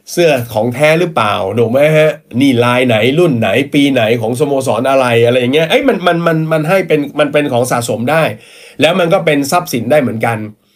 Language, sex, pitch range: Thai, male, 115-155 Hz